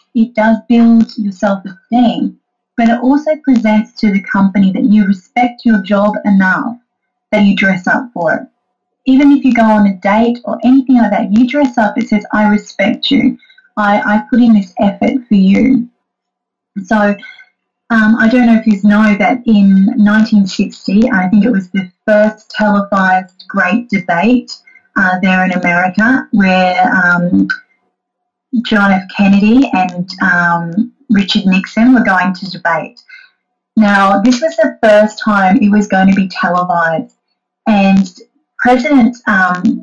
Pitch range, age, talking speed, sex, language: 200-245 Hz, 30-49, 155 wpm, female, English